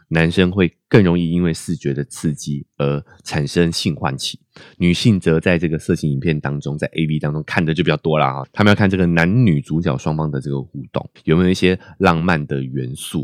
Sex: male